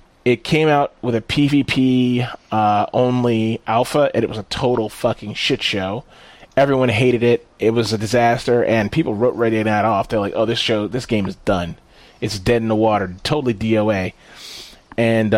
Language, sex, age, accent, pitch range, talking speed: English, male, 30-49, American, 110-135 Hz, 180 wpm